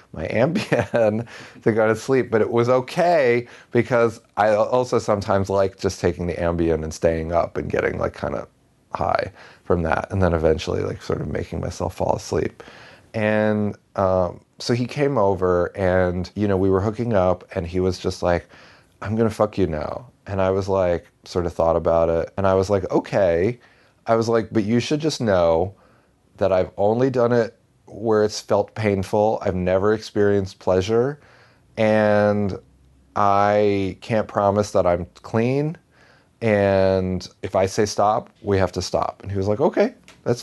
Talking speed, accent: 180 wpm, American